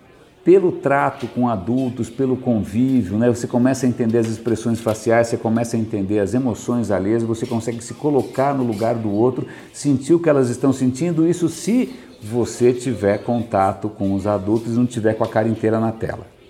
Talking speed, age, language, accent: 190 wpm, 50-69, Portuguese, Brazilian